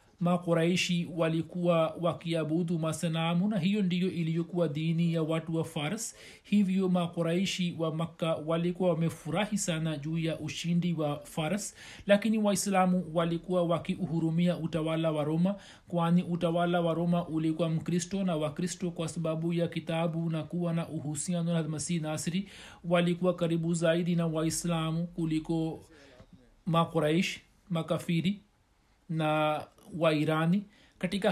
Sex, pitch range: male, 160-180 Hz